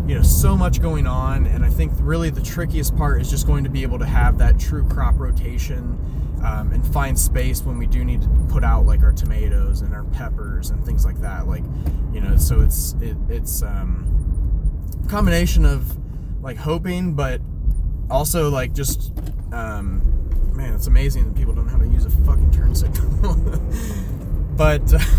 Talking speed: 185 wpm